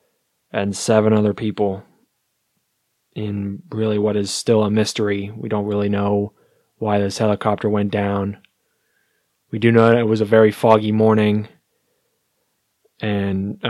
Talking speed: 130 wpm